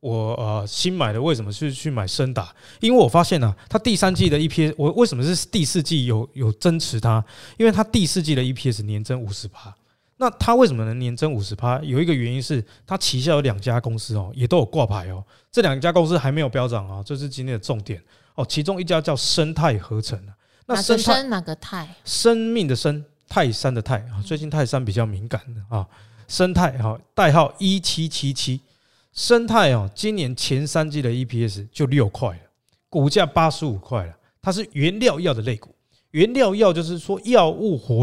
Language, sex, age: Chinese, male, 20-39